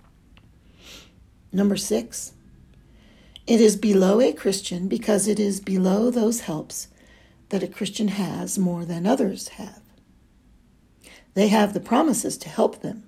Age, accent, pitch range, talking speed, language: 60-79, American, 185-230 Hz, 130 wpm, English